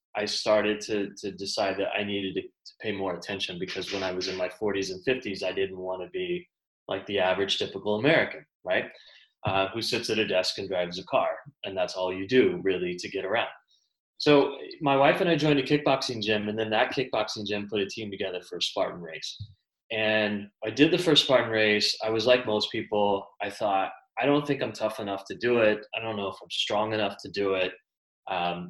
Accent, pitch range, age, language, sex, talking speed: American, 100-140 Hz, 20-39, English, male, 225 wpm